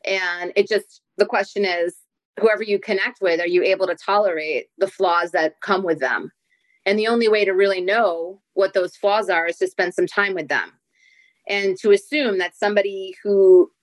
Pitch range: 190-245 Hz